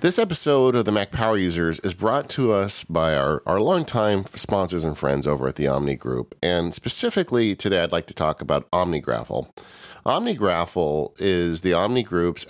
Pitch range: 75-105 Hz